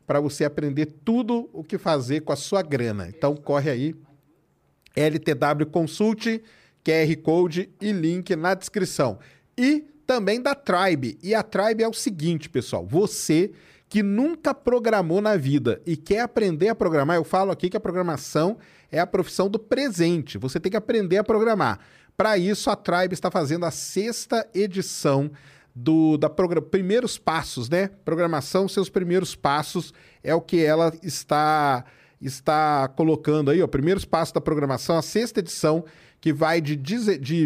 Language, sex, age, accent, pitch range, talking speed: Portuguese, male, 40-59, Brazilian, 150-200 Hz, 160 wpm